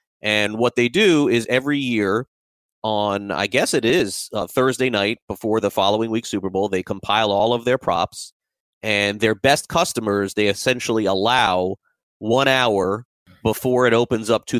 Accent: American